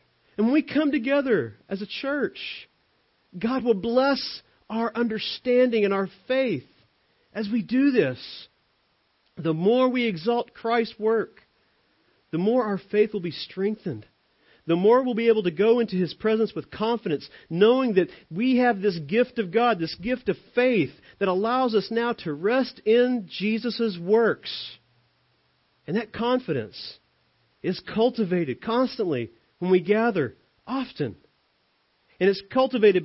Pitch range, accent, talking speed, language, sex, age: 165-235 Hz, American, 145 wpm, English, male, 40-59